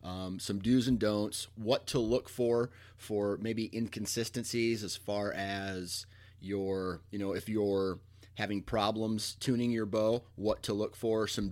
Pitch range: 95-110 Hz